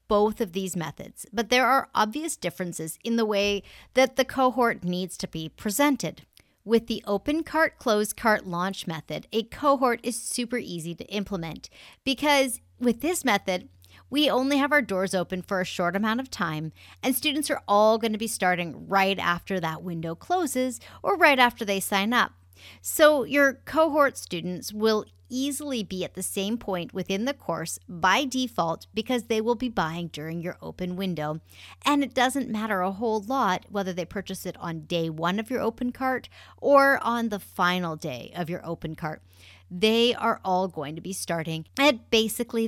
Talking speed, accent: 185 wpm, American